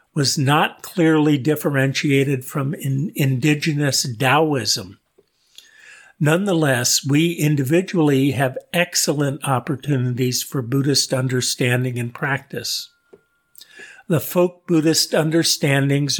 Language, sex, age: English, male, 50-69